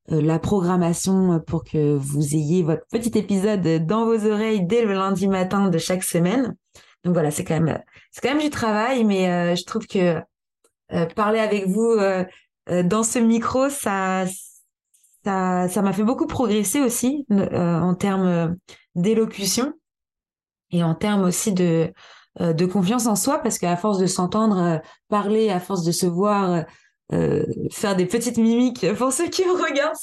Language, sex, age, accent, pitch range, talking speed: French, female, 20-39, French, 180-225 Hz, 160 wpm